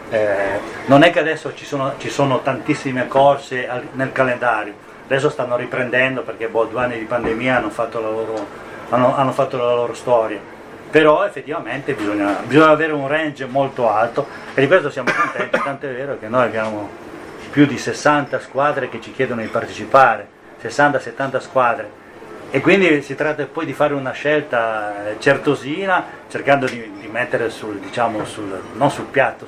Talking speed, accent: 170 wpm, native